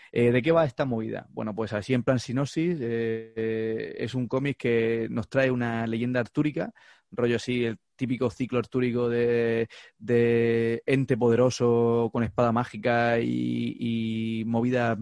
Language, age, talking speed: Spanish, 30-49, 155 wpm